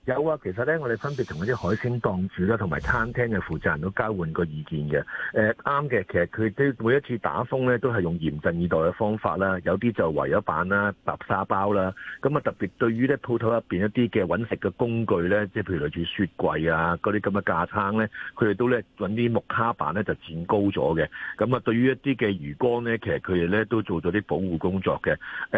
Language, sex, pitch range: Chinese, male, 95-120 Hz